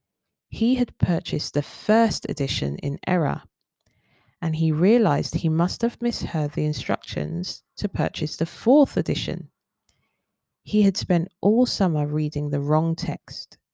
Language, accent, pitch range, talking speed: English, British, 150-195 Hz, 135 wpm